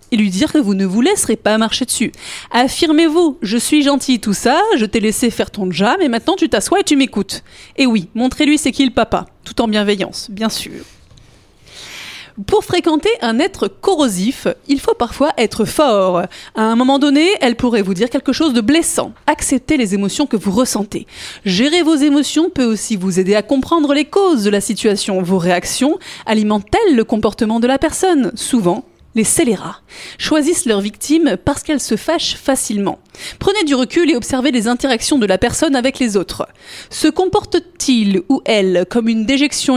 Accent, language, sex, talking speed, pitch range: French, French, female, 185 wpm, 220-305 Hz